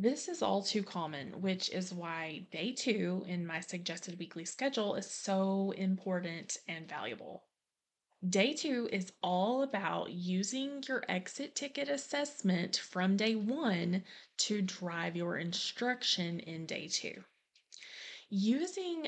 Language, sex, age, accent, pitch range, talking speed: English, female, 20-39, American, 175-215 Hz, 130 wpm